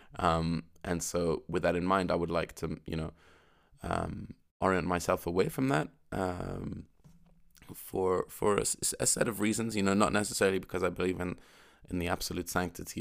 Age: 20-39